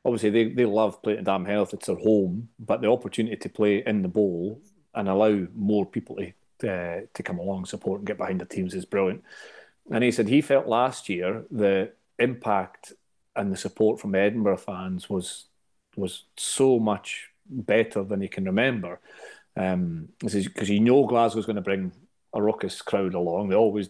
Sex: male